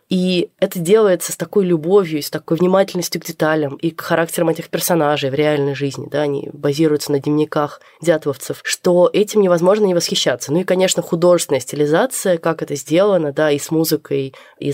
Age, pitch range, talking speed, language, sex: 20-39, 150-180 Hz, 175 wpm, Russian, female